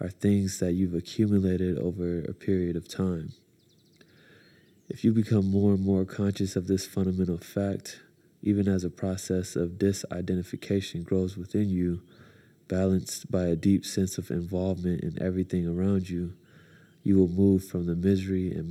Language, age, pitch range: English, 20-39, 90-100 Hz